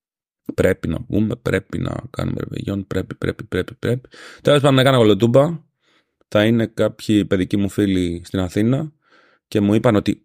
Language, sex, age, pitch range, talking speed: Greek, male, 30-49, 95-125 Hz, 160 wpm